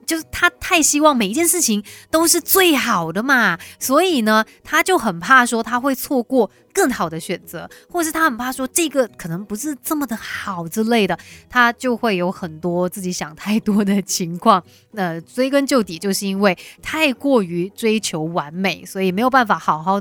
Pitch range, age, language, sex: 190-265 Hz, 20-39, Chinese, female